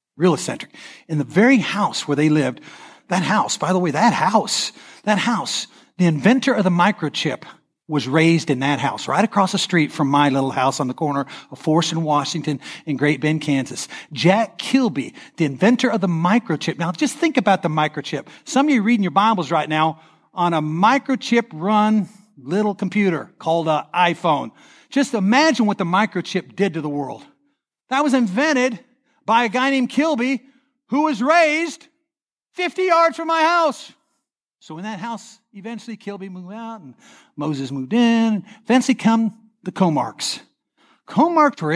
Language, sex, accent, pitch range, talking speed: English, male, American, 165-255 Hz, 170 wpm